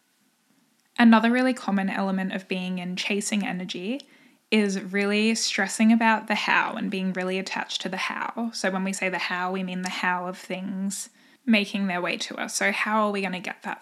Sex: female